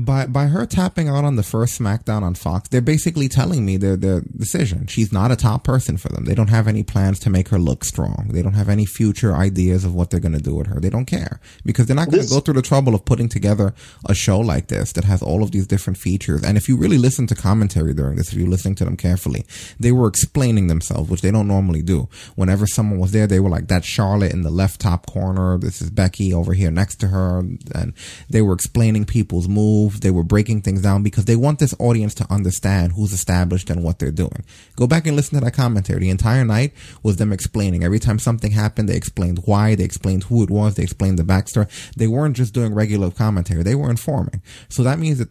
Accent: American